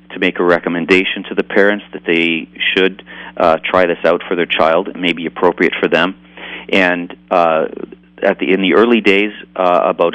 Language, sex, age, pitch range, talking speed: English, male, 40-59, 85-100 Hz, 195 wpm